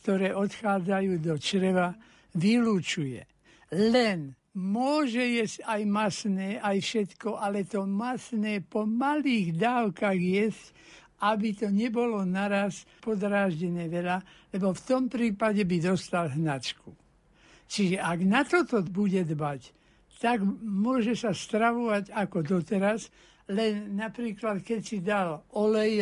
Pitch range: 180-220 Hz